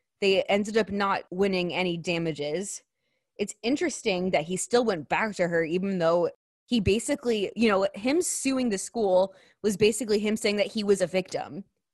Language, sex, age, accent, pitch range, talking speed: English, female, 20-39, American, 175-210 Hz, 175 wpm